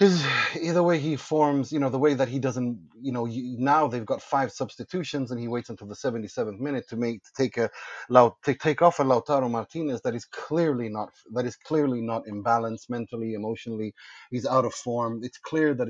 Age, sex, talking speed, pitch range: 30-49, male, 210 wpm, 110-130 Hz